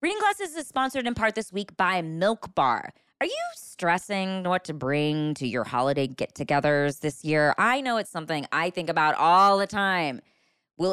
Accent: American